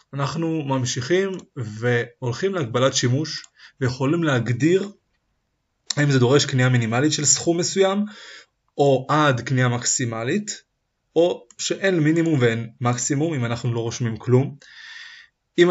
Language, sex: Hebrew, male